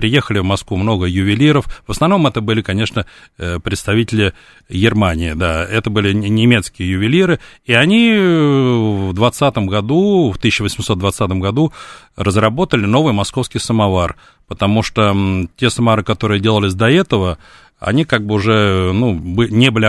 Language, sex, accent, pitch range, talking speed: Russian, male, native, 100-120 Hz, 135 wpm